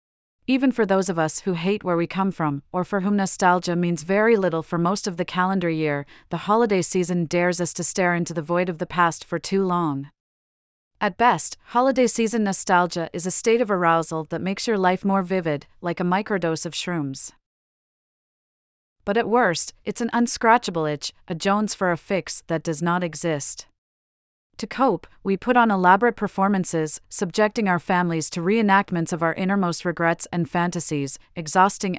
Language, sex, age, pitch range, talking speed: English, female, 40-59, 165-200 Hz, 180 wpm